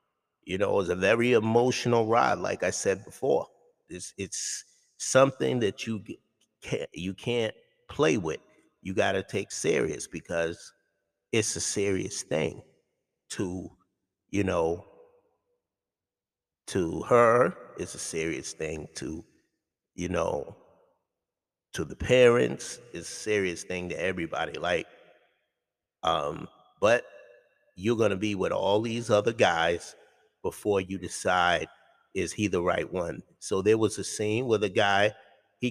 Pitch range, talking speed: 100-120 Hz, 135 wpm